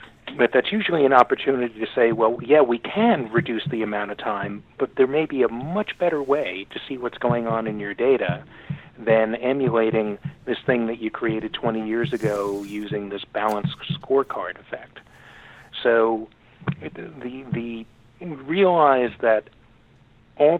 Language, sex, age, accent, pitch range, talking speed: English, male, 50-69, American, 110-130 Hz, 155 wpm